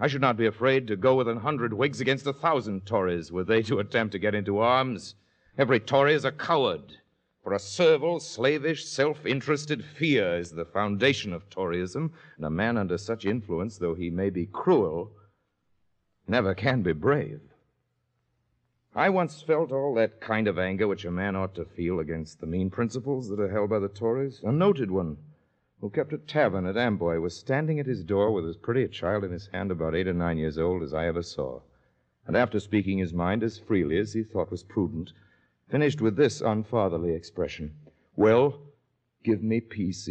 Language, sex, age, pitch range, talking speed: English, male, 50-69, 95-140 Hz, 195 wpm